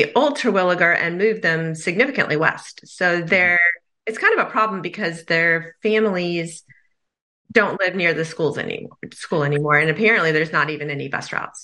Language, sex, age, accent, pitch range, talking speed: English, female, 30-49, American, 160-210 Hz, 170 wpm